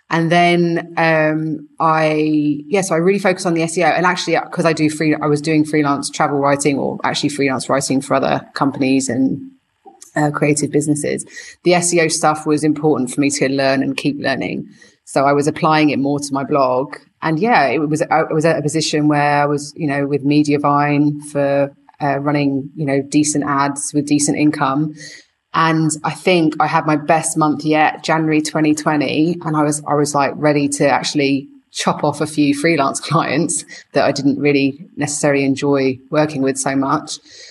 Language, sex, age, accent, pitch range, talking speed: English, female, 20-39, British, 140-160 Hz, 190 wpm